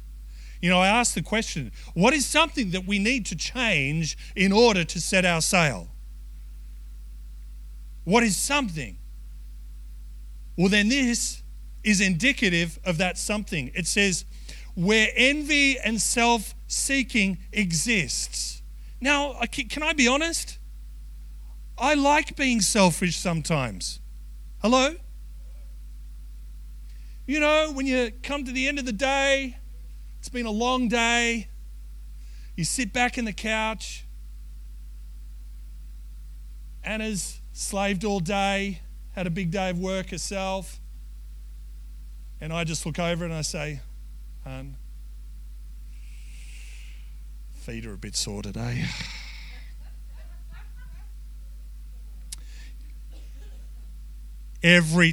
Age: 40-59